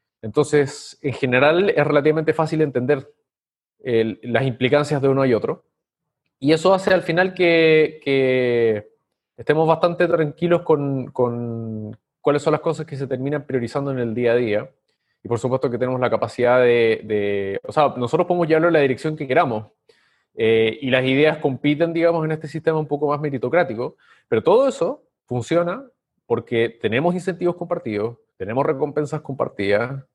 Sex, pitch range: male, 120-155 Hz